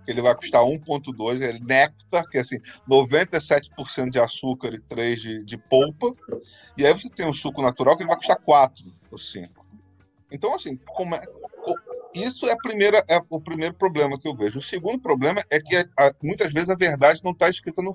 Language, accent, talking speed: Portuguese, Brazilian, 205 wpm